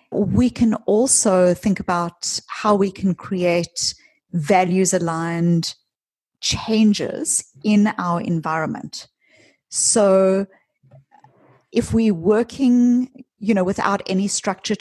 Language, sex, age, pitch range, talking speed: English, female, 40-59, 185-225 Hz, 95 wpm